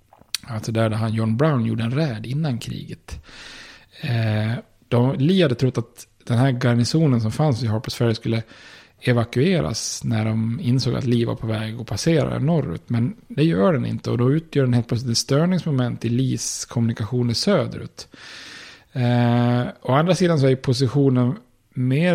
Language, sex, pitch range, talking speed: Swedish, male, 115-140 Hz, 165 wpm